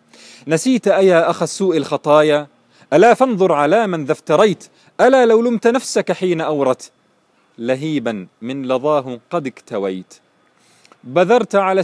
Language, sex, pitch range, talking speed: Arabic, male, 140-185 Hz, 120 wpm